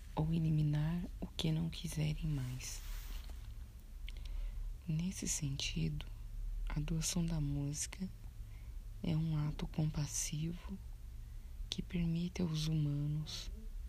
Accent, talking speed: Brazilian, 90 wpm